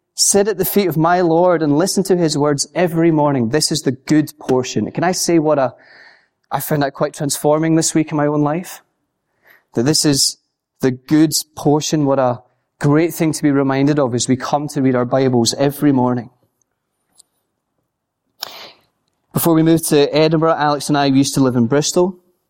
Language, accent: English, British